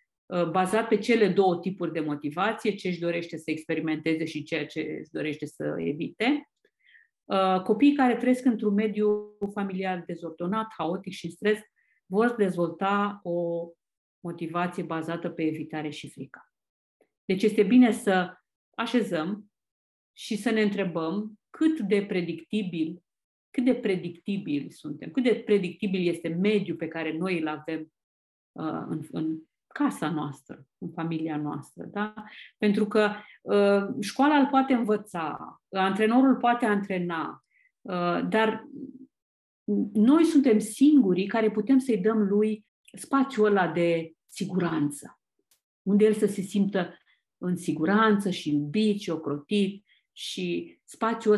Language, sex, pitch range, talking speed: Romanian, female, 165-220 Hz, 125 wpm